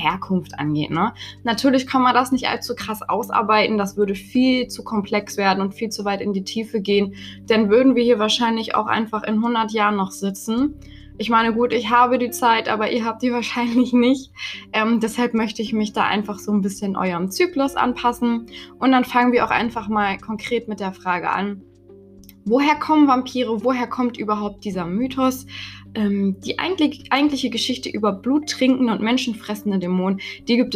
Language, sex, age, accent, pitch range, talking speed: German, female, 20-39, German, 200-245 Hz, 185 wpm